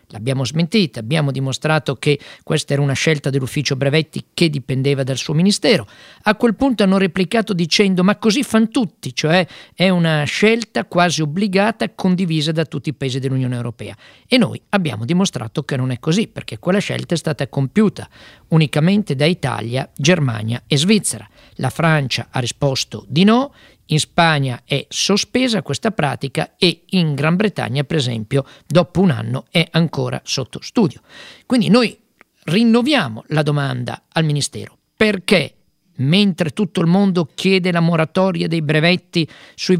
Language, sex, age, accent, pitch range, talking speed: Italian, male, 50-69, native, 140-185 Hz, 155 wpm